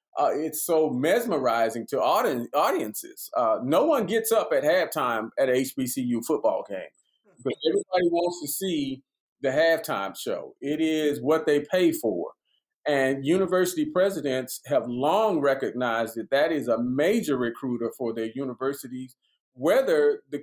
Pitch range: 130-180 Hz